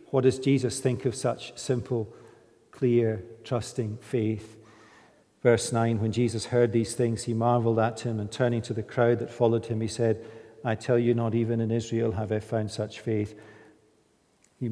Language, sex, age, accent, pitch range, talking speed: English, male, 50-69, British, 110-130 Hz, 180 wpm